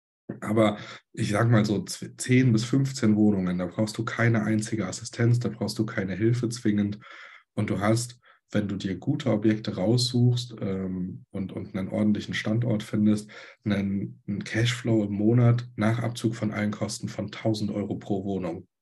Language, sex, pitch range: German, male, 105-115 Hz